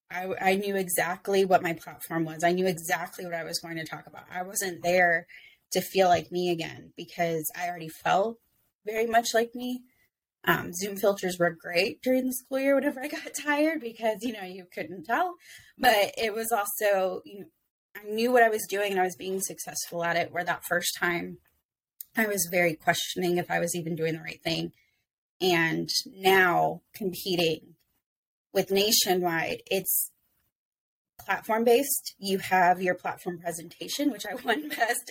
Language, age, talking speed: English, 20-39, 175 wpm